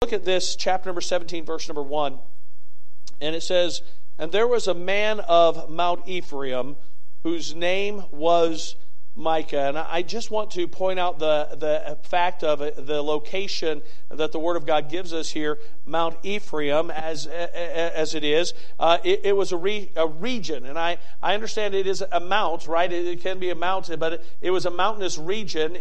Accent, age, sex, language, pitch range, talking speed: American, 50-69, male, English, 155-185 Hz, 185 wpm